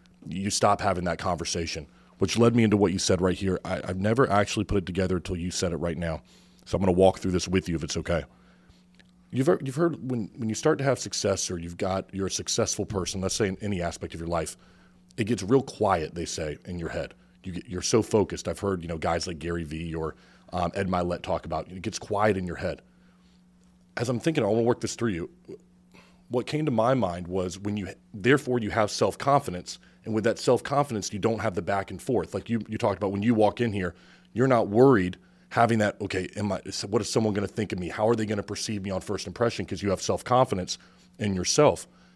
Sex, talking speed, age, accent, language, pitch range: male, 250 wpm, 30-49, American, English, 90-115 Hz